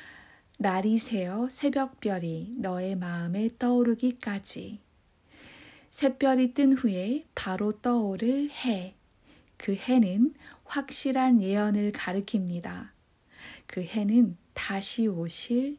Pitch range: 190-250 Hz